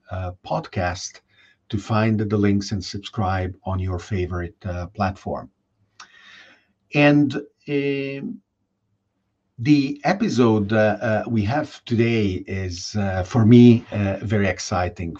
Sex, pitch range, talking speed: male, 100-115 Hz, 115 wpm